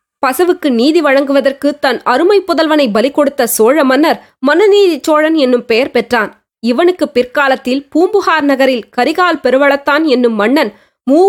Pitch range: 250-325 Hz